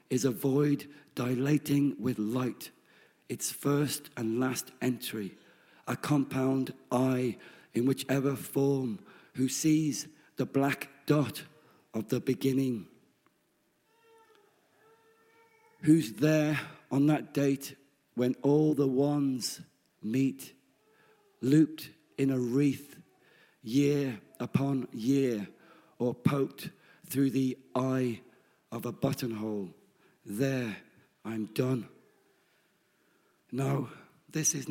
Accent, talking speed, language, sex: British, 95 wpm, English, male